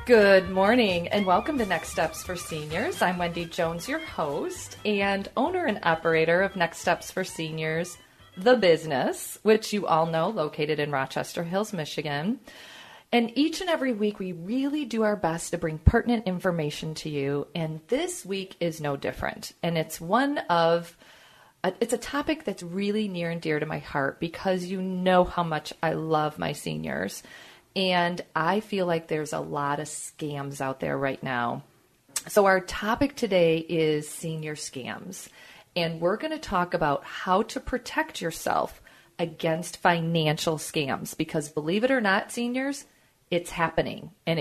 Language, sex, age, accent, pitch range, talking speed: English, female, 40-59, American, 160-210 Hz, 165 wpm